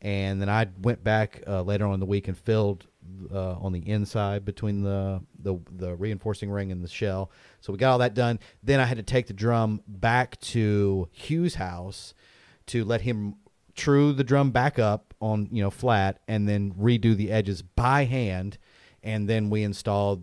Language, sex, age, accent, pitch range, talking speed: English, male, 30-49, American, 100-120 Hz, 195 wpm